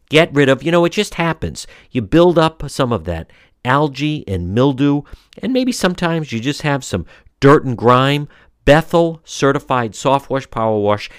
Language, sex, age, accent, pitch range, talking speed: English, male, 50-69, American, 105-155 Hz, 175 wpm